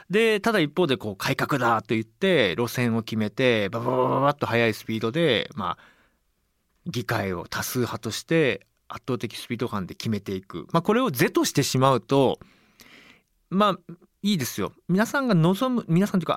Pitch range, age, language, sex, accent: 120-185 Hz, 40-59, Japanese, male, native